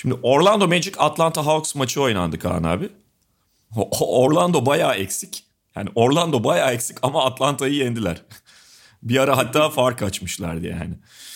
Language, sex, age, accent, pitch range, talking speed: Turkish, male, 40-59, native, 95-145 Hz, 130 wpm